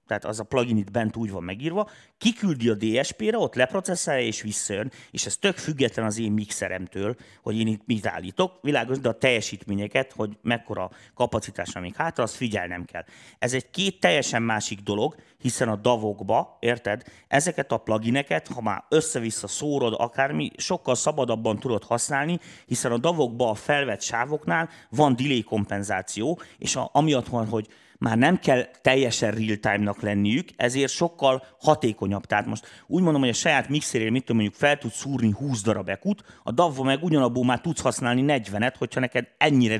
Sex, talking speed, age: male, 170 wpm, 30-49